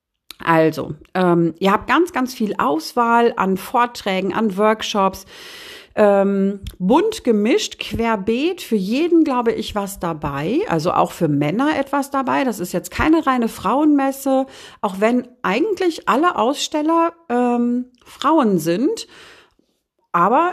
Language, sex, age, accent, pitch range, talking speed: German, female, 40-59, German, 195-260 Hz, 125 wpm